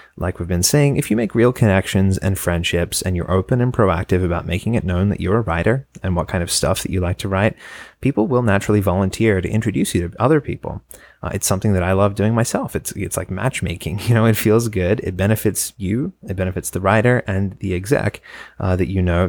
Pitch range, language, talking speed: 90-115 Hz, English, 235 wpm